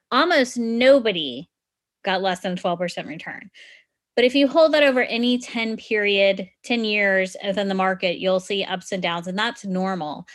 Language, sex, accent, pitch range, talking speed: English, female, American, 195-255 Hz, 170 wpm